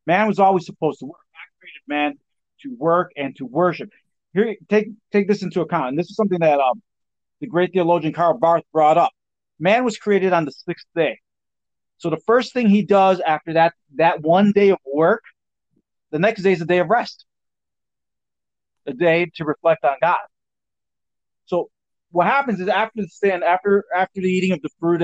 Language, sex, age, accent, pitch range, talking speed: English, male, 40-59, American, 150-195 Hz, 195 wpm